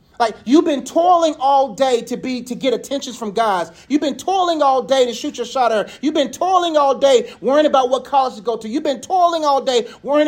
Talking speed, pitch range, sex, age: 245 wpm, 225-290 Hz, male, 30-49